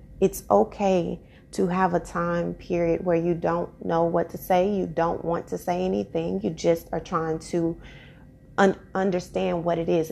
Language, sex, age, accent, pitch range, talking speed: English, female, 30-49, American, 165-190 Hz, 180 wpm